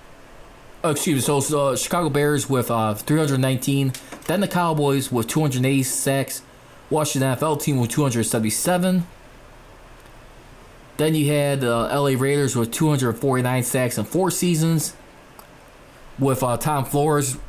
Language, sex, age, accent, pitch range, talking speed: English, male, 20-39, American, 125-150 Hz, 130 wpm